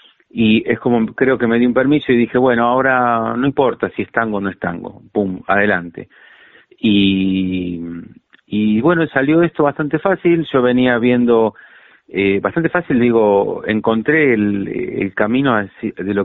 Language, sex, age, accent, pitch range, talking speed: Spanish, male, 40-59, Argentinian, 100-125 Hz, 165 wpm